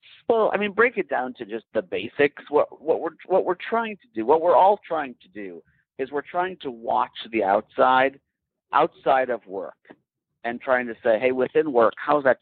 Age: 50-69